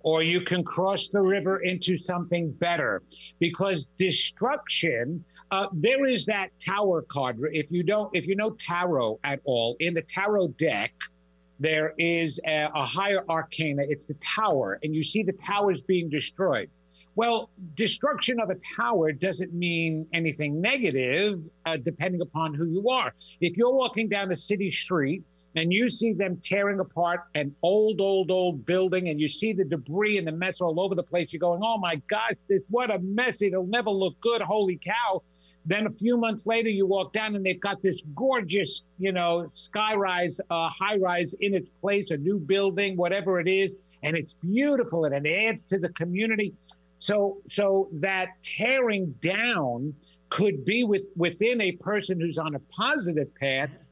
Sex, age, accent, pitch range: male, 50-69, American, 160-200 Hz